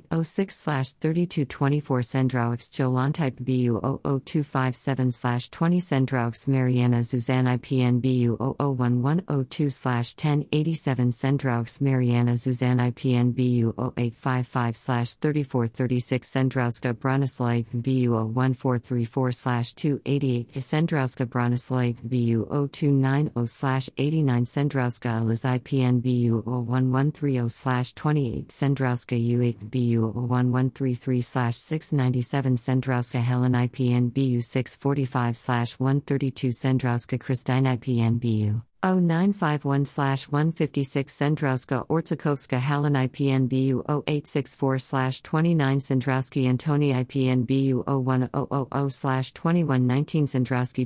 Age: 50-69